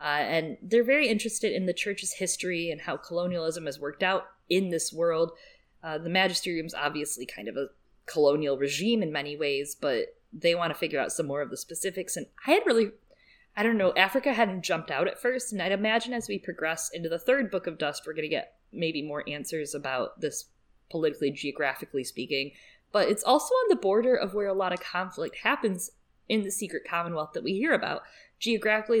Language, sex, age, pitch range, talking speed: English, female, 20-39, 155-205 Hz, 210 wpm